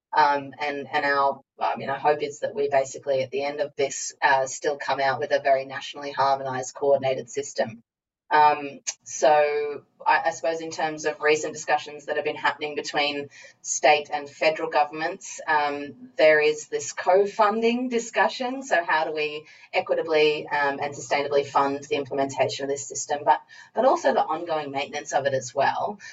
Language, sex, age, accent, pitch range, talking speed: English, female, 30-49, Australian, 135-155 Hz, 170 wpm